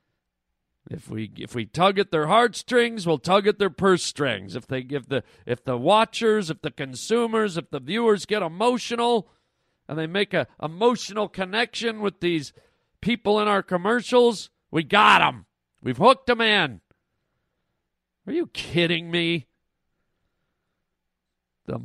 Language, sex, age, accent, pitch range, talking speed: English, male, 50-69, American, 130-215 Hz, 145 wpm